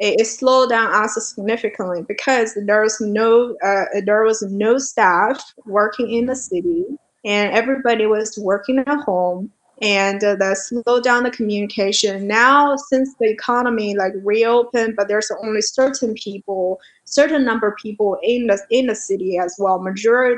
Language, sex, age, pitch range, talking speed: English, female, 20-39, 205-240 Hz, 160 wpm